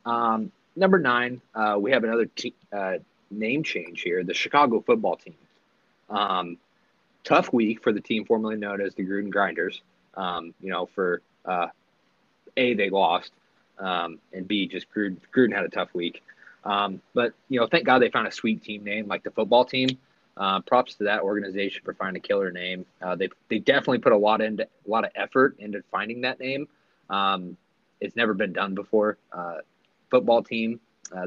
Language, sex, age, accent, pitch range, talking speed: English, male, 20-39, American, 95-120 Hz, 190 wpm